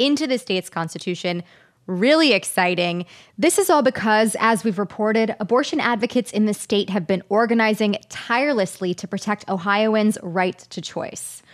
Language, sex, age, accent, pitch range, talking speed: English, female, 20-39, American, 195-250 Hz, 145 wpm